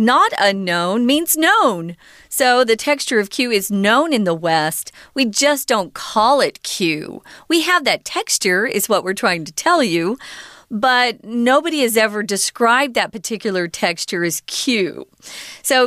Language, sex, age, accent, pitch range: Chinese, female, 40-59, American, 180-250 Hz